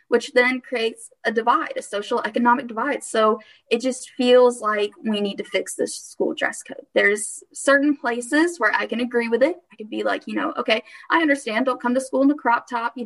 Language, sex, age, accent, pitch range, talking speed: English, female, 10-29, American, 210-275 Hz, 225 wpm